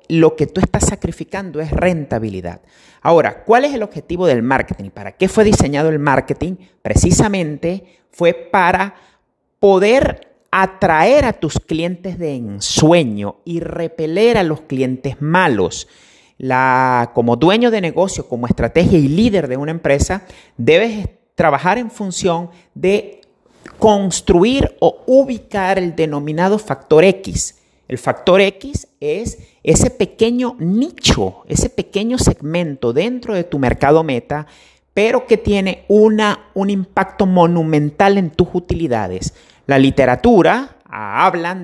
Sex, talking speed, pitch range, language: male, 125 wpm, 150-200 Hz, Spanish